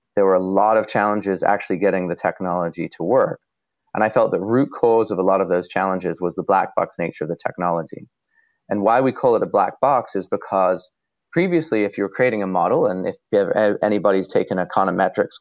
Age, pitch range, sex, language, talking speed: 30-49, 90-110 Hz, male, English, 210 wpm